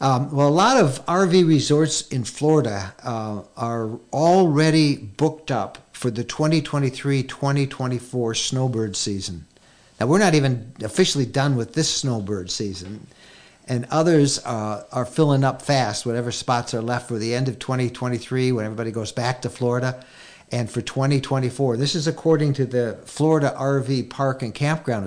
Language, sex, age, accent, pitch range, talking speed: English, male, 50-69, American, 115-140 Hz, 155 wpm